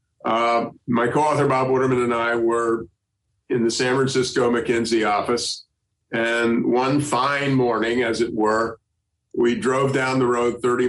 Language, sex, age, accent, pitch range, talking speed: English, male, 50-69, American, 115-130 Hz, 150 wpm